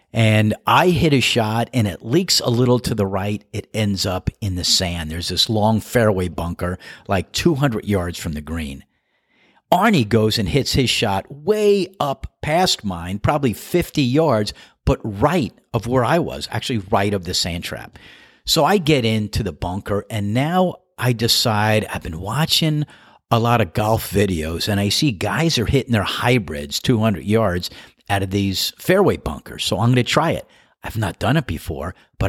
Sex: male